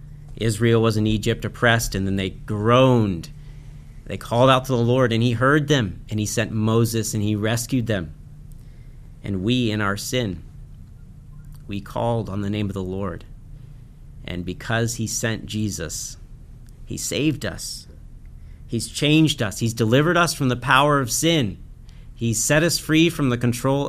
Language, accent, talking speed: English, American, 165 wpm